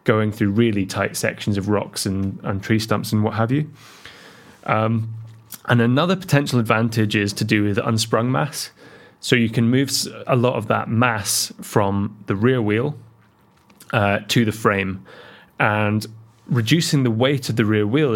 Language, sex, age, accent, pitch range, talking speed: English, male, 20-39, British, 105-120 Hz, 170 wpm